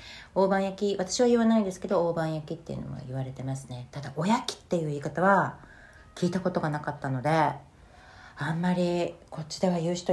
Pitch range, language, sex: 130-170 Hz, Japanese, female